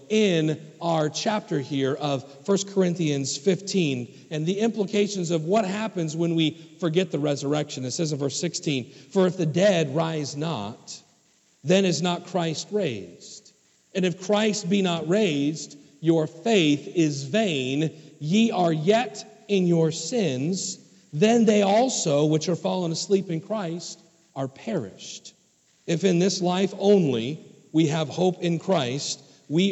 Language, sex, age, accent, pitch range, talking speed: English, male, 40-59, American, 150-205 Hz, 145 wpm